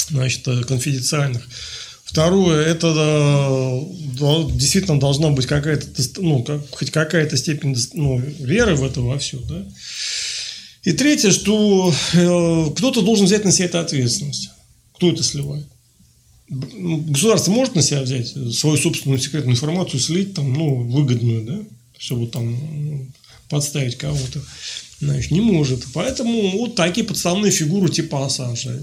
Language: Russian